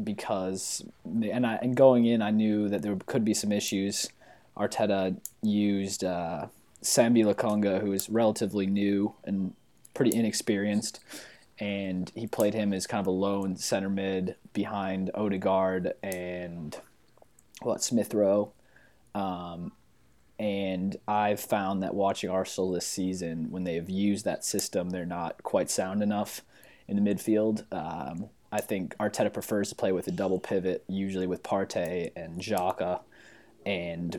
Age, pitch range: 20-39, 95-105 Hz